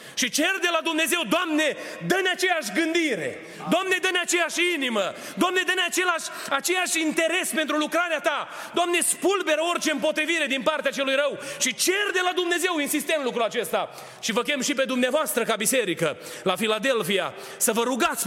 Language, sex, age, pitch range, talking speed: Romanian, male, 30-49, 220-300 Hz, 170 wpm